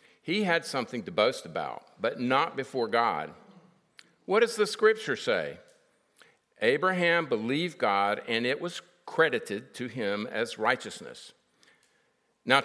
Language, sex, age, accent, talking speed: English, male, 50-69, American, 130 wpm